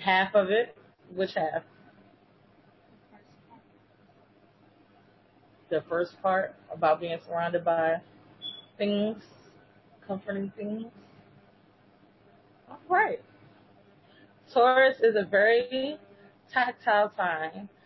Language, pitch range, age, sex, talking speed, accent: English, 175-225 Hz, 20-39, female, 75 wpm, American